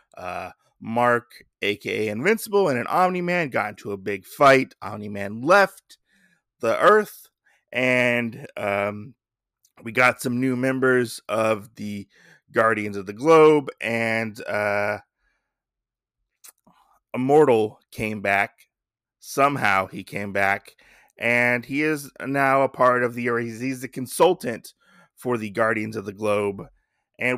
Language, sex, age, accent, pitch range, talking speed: English, male, 20-39, American, 110-155 Hz, 130 wpm